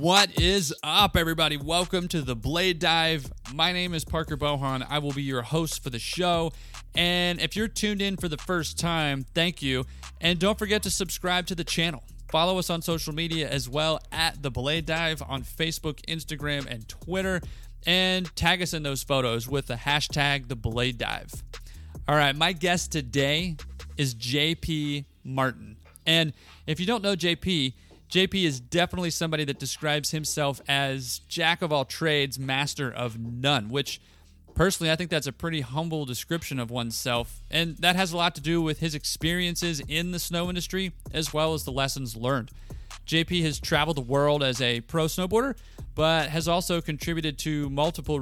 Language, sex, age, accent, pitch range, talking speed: English, male, 30-49, American, 130-170 Hz, 175 wpm